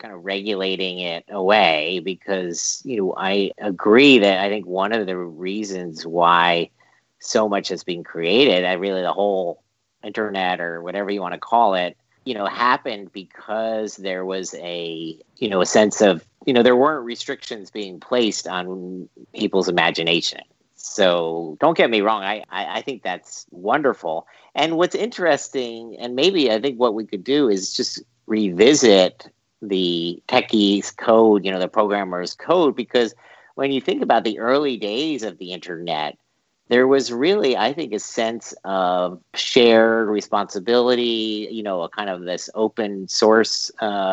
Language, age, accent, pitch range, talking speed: English, 50-69, American, 95-115 Hz, 160 wpm